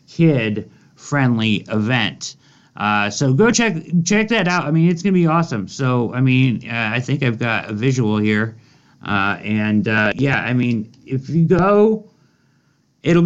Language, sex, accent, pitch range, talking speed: English, male, American, 105-140 Hz, 165 wpm